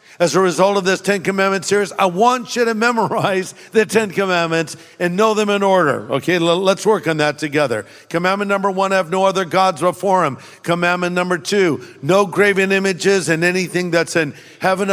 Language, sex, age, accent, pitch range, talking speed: English, male, 50-69, American, 165-195 Hz, 190 wpm